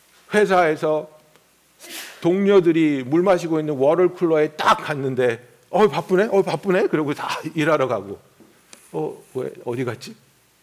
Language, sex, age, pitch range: Korean, male, 50-69, 155-235 Hz